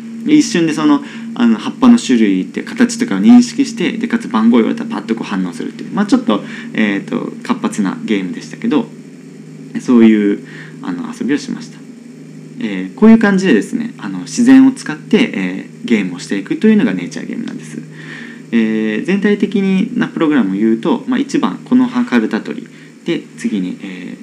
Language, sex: Japanese, male